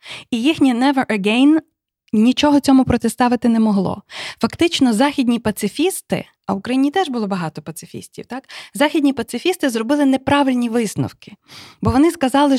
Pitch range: 210-270 Hz